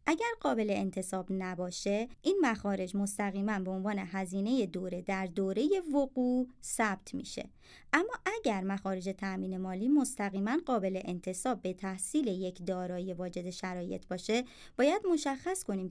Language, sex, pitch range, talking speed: Persian, male, 185-255 Hz, 130 wpm